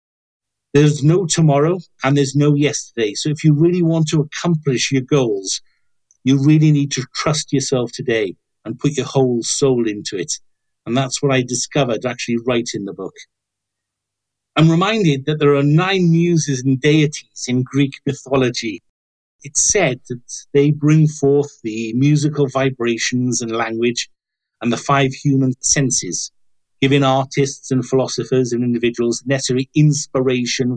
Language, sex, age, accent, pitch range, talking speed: English, male, 50-69, British, 125-150 Hz, 150 wpm